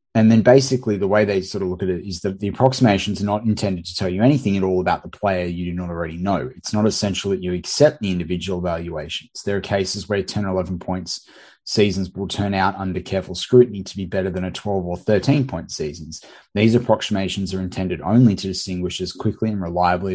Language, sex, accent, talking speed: English, male, Australian, 230 wpm